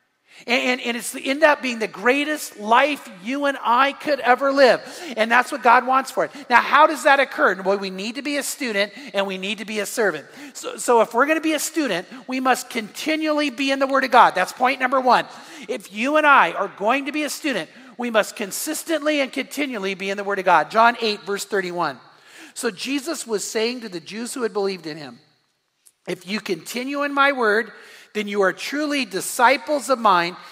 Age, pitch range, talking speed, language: 40-59, 200-275 Hz, 225 wpm, English